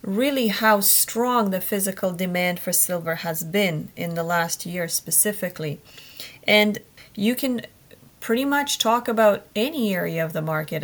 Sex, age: female, 30-49